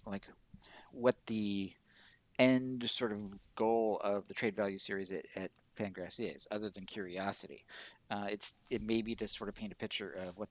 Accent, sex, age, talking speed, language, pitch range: American, male, 50-69, 175 wpm, English, 100-130 Hz